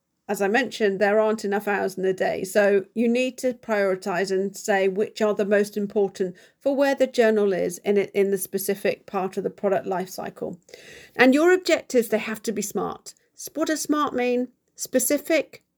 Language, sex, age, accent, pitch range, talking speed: English, female, 50-69, British, 200-255 Hz, 190 wpm